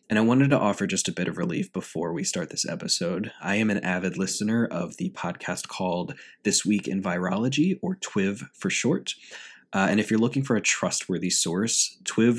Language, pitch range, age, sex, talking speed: English, 95-115 Hz, 20-39, male, 205 wpm